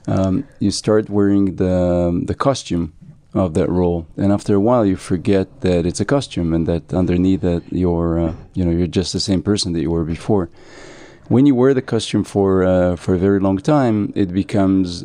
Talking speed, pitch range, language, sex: 205 wpm, 90-100 Hz, Hebrew, male